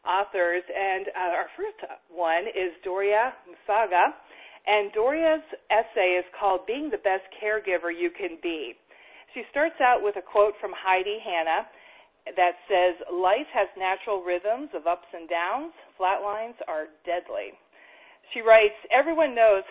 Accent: American